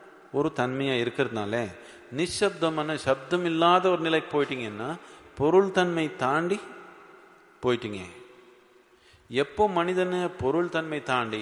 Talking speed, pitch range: 95 wpm, 120-175 Hz